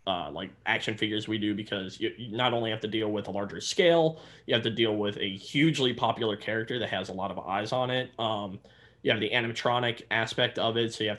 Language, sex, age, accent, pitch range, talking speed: English, male, 20-39, American, 105-120 Hz, 245 wpm